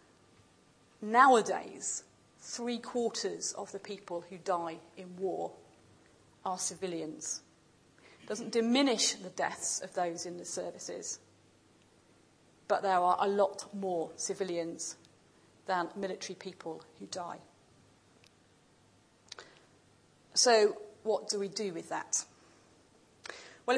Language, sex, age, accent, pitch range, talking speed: English, female, 40-59, British, 190-235 Hz, 105 wpm